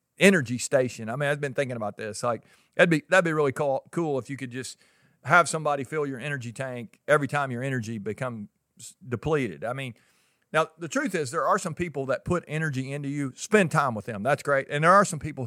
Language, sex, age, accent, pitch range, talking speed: English, male, 50-69, American, 125-155 Hz, 230 wpm